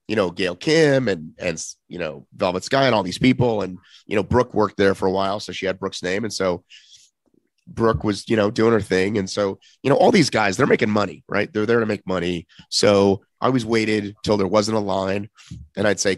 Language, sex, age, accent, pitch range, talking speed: English, male, 30-49, American, 95-115 Hz, 240 wpm